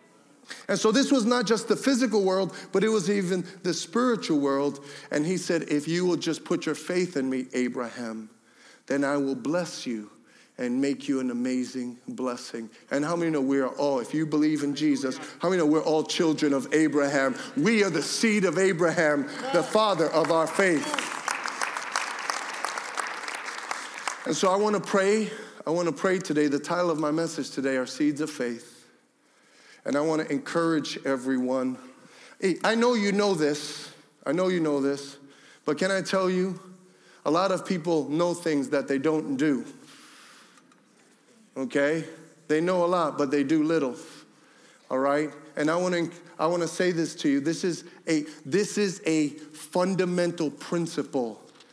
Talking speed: 175 wpm